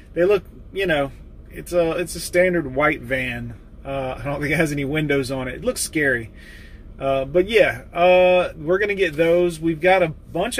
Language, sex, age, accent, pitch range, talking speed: English, male, 30-49, American, 135-165 Hz, 205 wpm